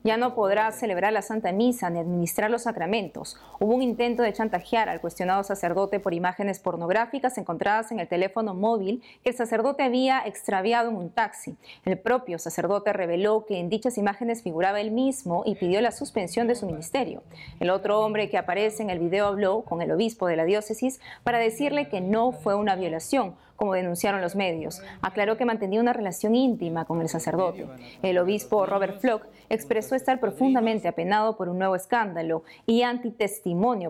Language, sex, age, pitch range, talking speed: Spanish, female, 30-49, 185-235 Hz, 180 wpm